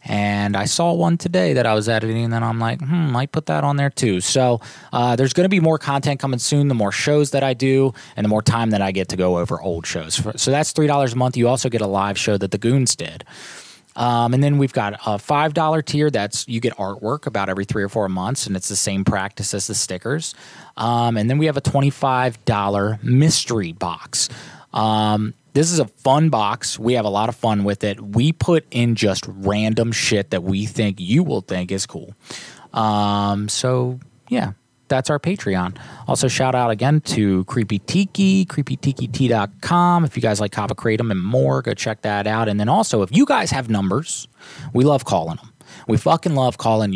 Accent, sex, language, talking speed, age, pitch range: American, male, English, 215 wpm, 20-39, 105-140 Hz